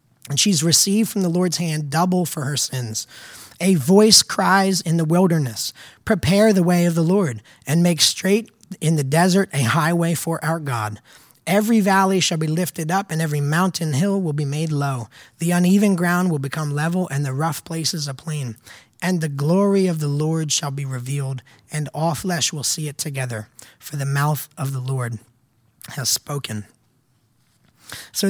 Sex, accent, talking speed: male, American, 180 wpm